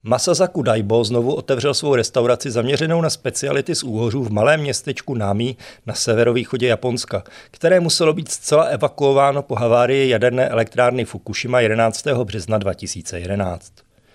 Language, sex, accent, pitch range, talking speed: Czech, male, native, 110-140 Hz, 130 wpm